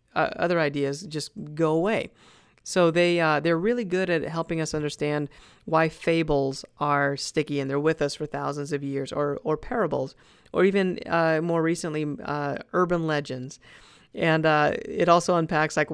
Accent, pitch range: American, 150-175 Hz